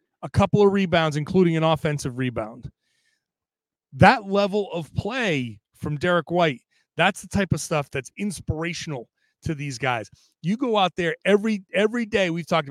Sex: male